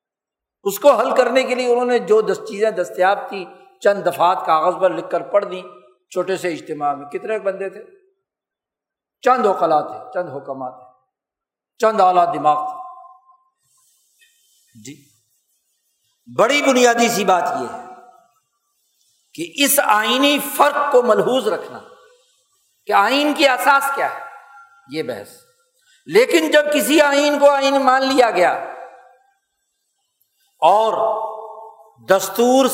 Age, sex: 50-69, male